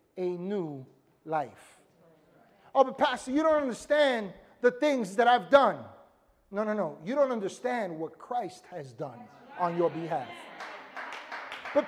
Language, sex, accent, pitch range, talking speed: English, male, American, 230-310 Hz, 140 wpm